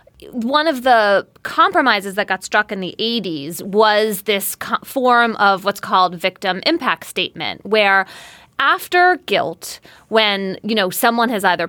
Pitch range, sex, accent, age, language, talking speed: 185-265 Hz, female, American, 20-39, English, 145 wpm